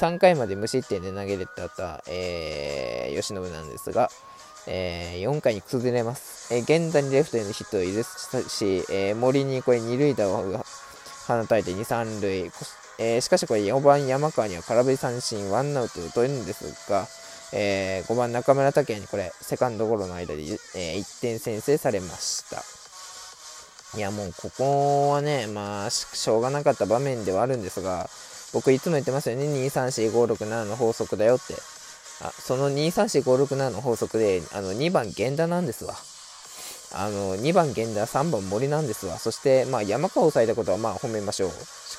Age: 20-39